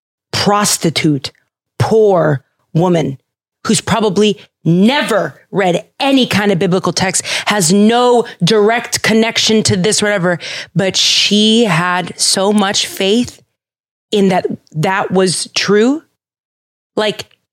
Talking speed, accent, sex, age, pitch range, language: 110 wpm, American, female, 30-49, 190-260 Hz, English